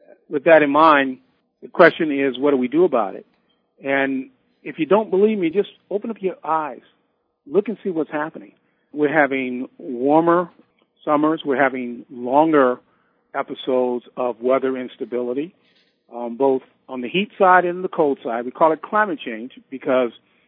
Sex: male